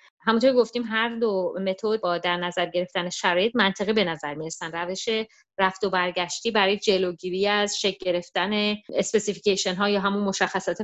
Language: Persian